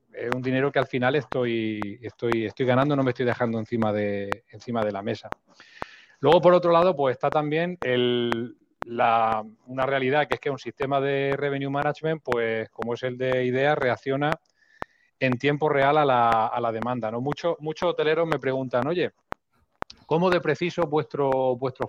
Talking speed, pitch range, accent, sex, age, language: 180 wpm, 120-145 Hz, Spanish, male, 30-49, Spanish